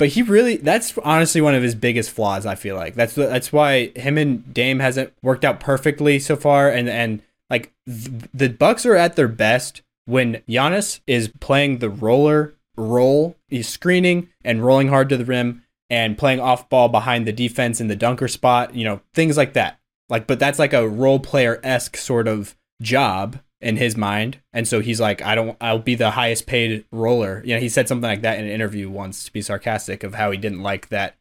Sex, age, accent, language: male, 20-39, American, English